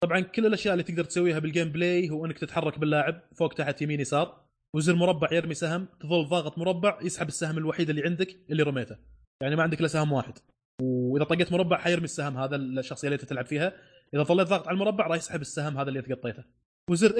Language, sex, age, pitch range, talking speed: Arabic, male, 20-39, 145-175 Hz, 205 wpm